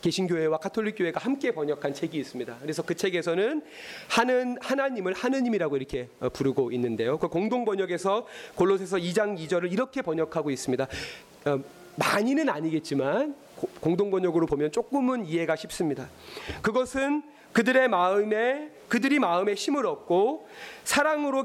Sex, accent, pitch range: male, native, 150-245 Hz